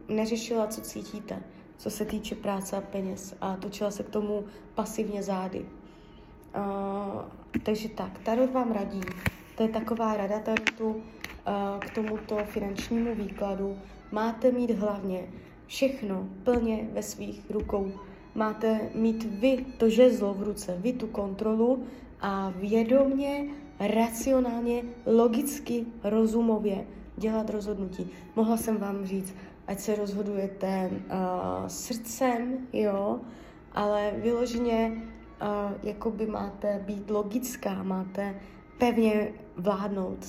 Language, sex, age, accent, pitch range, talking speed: Czech, female, 20-39, native, 200-230 Hz, 120 wpm